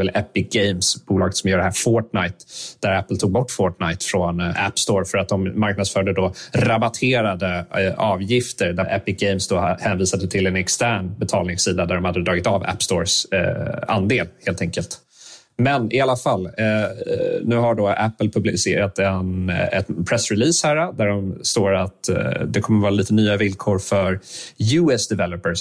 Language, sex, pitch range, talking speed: Swedish, male, 95-115 Hz, 155 wpm